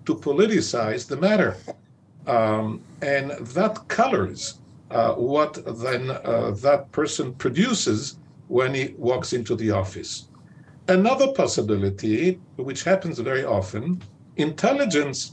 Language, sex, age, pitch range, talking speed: English, male, 50-69, 130-185 Hz, 110 wpm